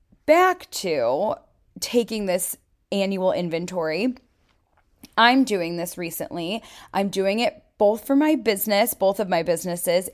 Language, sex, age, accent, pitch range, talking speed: English, female, 20-39, American, 180-235 Hz, 125 wpm